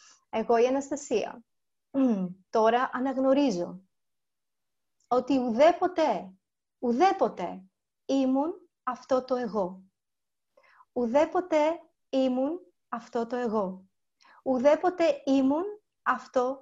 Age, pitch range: 30-49, 250-325 Hz